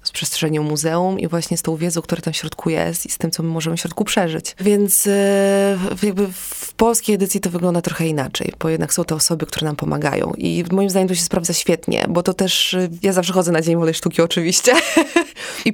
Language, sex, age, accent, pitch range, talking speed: Polish, female, 20-39, native, 170-215 Hz, 230 wpm